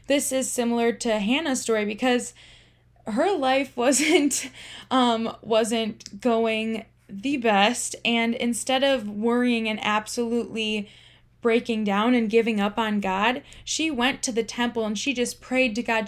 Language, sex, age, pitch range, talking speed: English, female, 10-29, 220-250 Hz, 145 wpm